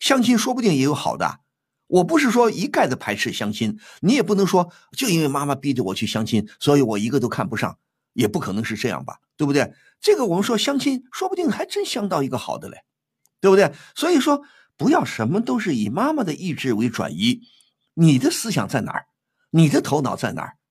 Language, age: Chinese, 50-69